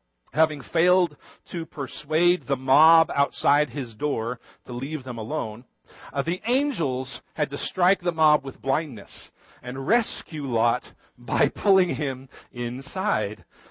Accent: American